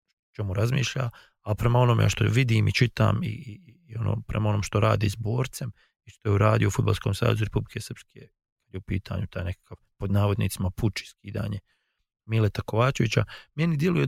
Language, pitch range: English, 100-125 Hz